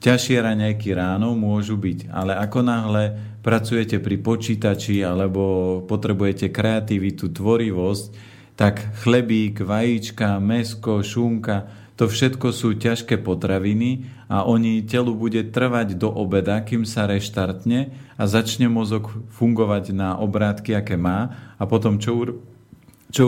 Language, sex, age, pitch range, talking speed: Slovak, male, 40-59, 100-115 Hz, 120 wpm